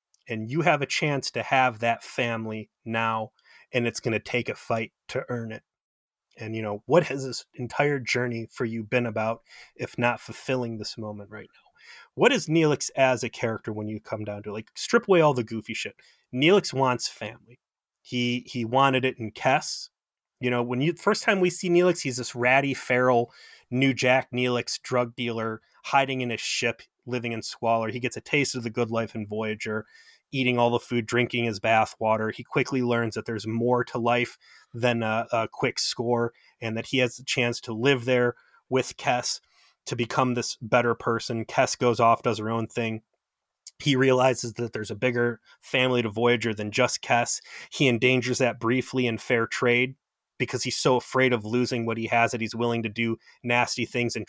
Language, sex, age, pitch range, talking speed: English, male, 30-49, 115-130 Hz, 200 wpm